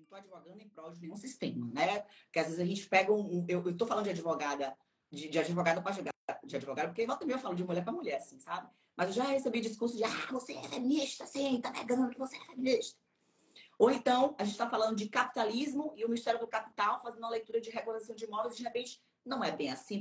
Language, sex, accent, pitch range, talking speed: Portuguese, female, Brazilian, 165-255 Hz, 245 wpm